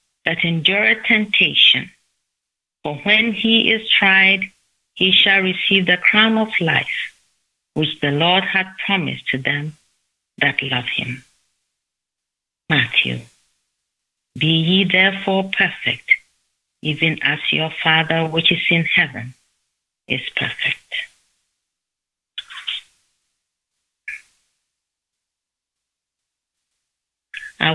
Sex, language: female, English